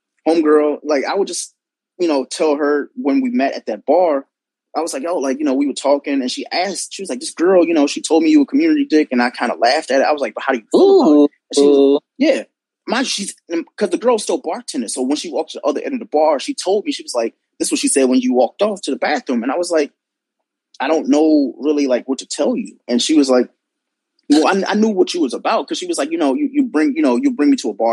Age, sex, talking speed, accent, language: 20-39, male, 290 wpm, American, English